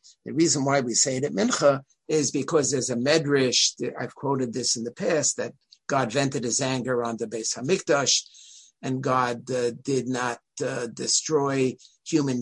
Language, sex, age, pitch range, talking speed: English, male, 50-69, 125-145 Hz, 175 wpm